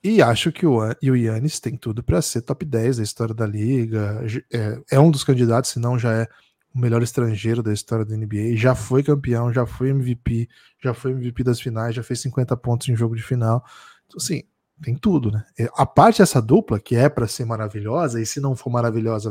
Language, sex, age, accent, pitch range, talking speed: Portuguese, male, 10-29, Brazilian, 115-150 Hz, 210 wpm